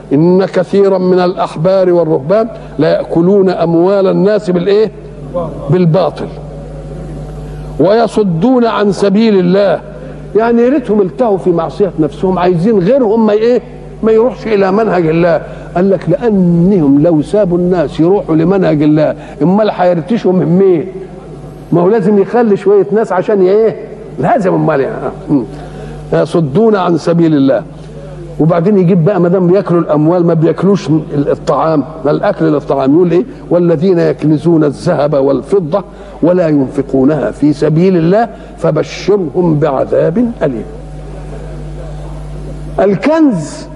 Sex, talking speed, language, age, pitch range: male, 115 wpm, Arabic, 60-79, 155-200 Hz